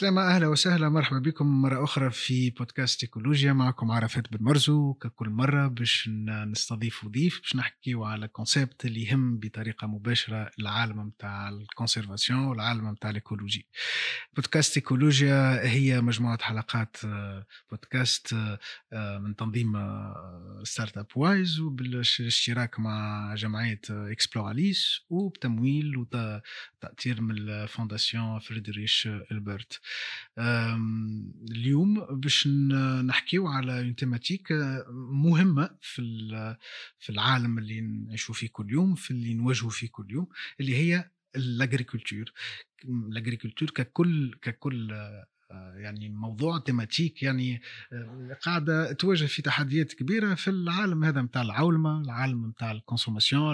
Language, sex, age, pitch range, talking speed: Arabic, male, 30-49, 110-140 Hz, 110 wpm